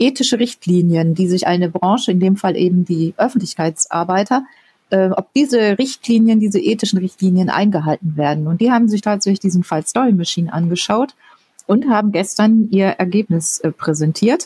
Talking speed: 160 wpm